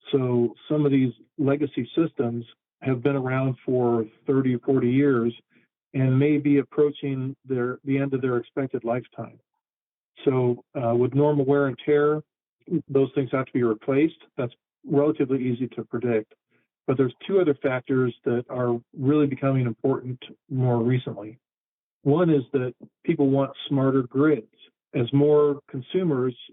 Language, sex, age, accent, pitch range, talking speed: English, male, 50-69, American, 120-140 Hz, 145 wpm